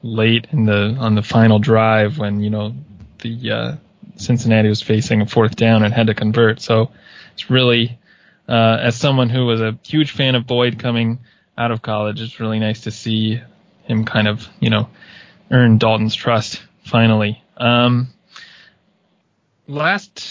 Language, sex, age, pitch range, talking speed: English, male, 20-39, 110-130 Hz, 165 wpm